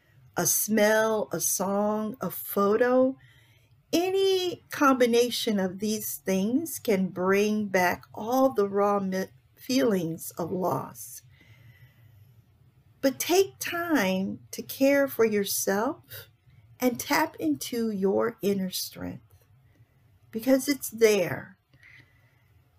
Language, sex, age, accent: English, female, 50-69, American